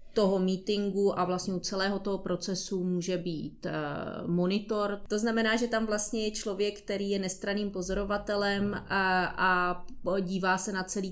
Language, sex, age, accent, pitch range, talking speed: Czech, female, 30-49, native, 180-205 Hz, 150 wpm